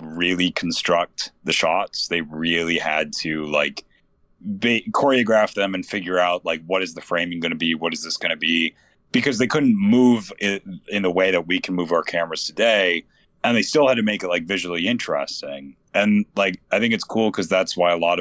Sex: male